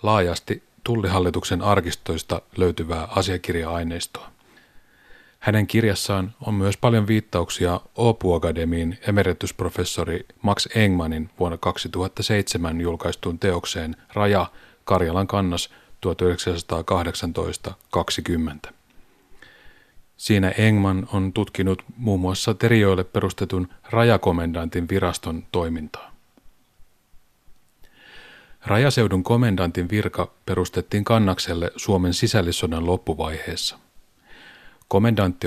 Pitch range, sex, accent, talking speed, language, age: 85-105 Hz, male, native, 75 wpm, Finnish, 30-49